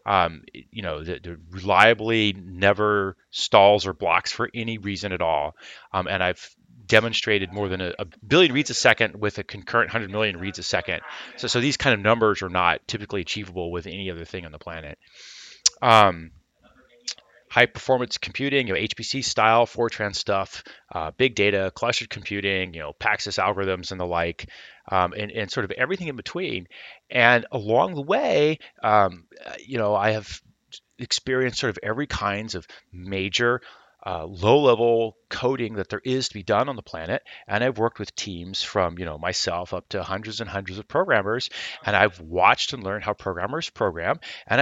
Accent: American